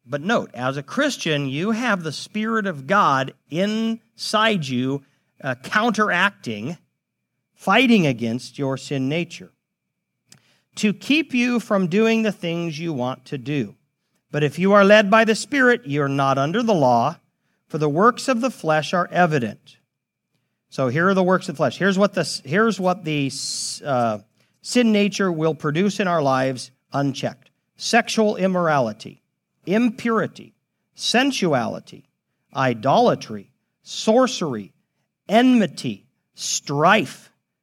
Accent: American